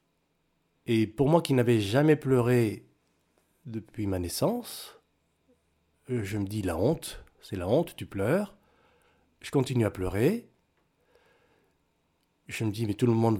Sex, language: male, French